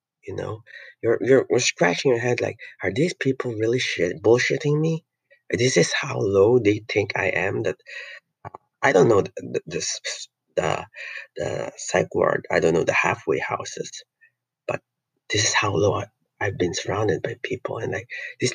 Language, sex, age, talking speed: English, male, 30-49, 170 wpm